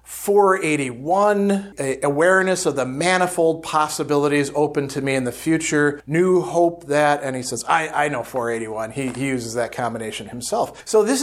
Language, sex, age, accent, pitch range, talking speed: English, male, 40-59, American, 135-170 Hz, 160 wpm